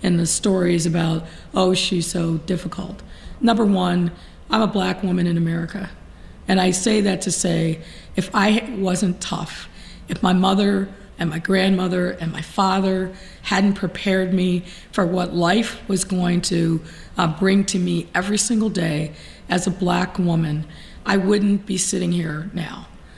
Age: 40-59